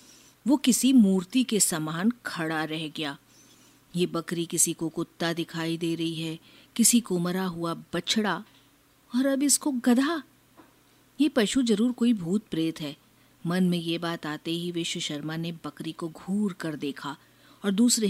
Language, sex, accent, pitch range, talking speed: Hindi, female, native, 160-215 Hz, 160 wpm